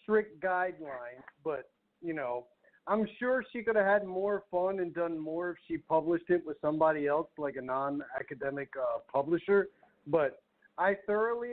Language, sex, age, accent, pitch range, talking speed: English, male, 50-69, American, 155-195 Hz, 160 wpm